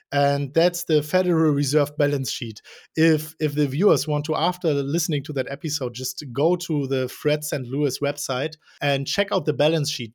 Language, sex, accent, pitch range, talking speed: English, male, German, 150-190 Hz, 190 wpm